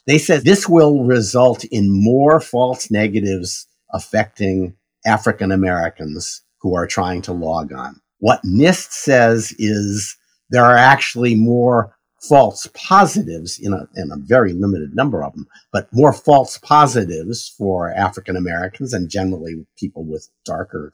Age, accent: 50-69, American